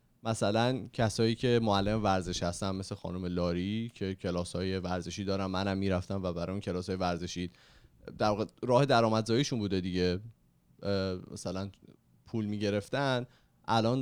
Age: 30-49